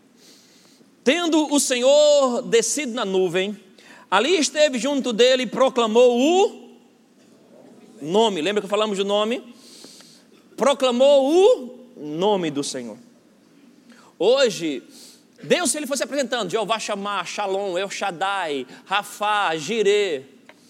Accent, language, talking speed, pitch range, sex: Brazilian, Portuguese, 105 wpm, 195-255 Hz, male